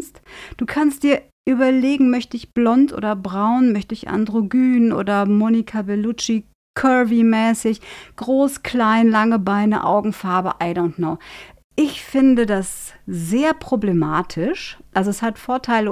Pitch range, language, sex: 185-235 Hz, German, female